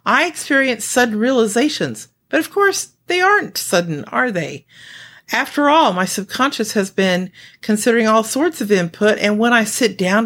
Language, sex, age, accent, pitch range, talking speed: English, female, 50-69, American, 185-265 Hz, 165 wpm